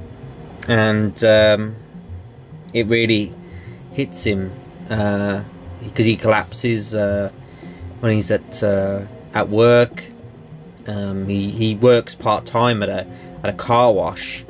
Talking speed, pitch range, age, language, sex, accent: 120 wpm, 95-120 Hz, 20-39, English, male, British